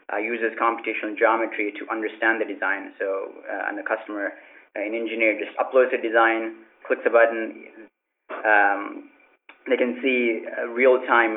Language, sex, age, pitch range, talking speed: English, male, 20-39, 110-130 Hz, 150 wpm